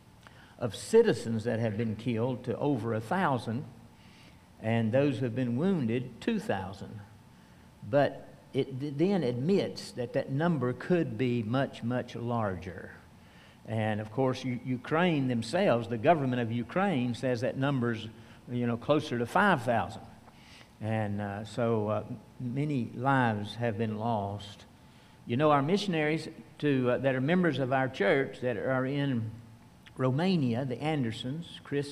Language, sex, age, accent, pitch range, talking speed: English, male, 60-79, American, 115-150 Hz, 145 wpm